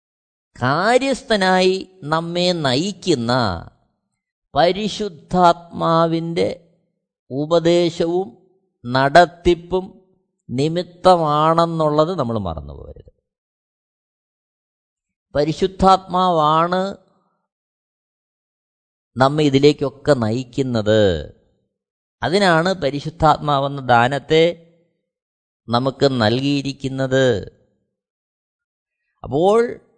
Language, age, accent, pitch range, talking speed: Malayalam, 20-39, native, 140-190 Hz, 35 wpm